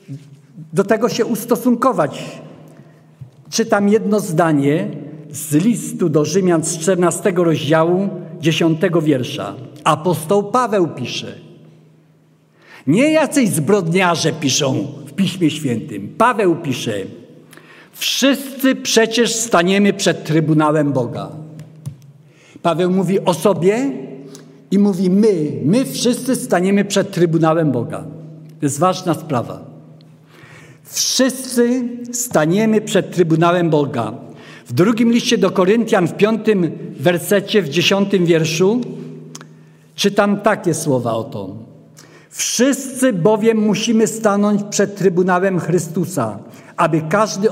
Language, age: Polish, 50-69